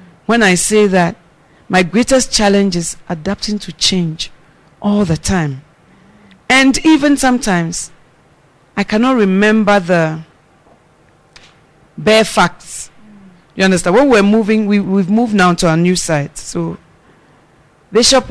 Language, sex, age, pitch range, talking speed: English, female, 40-59, 165-210 Hz, 120 wpm